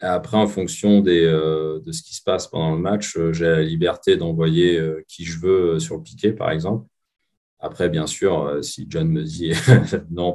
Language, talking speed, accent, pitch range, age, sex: French, 210 wpm, French, 80-100 Hz, 30-49, male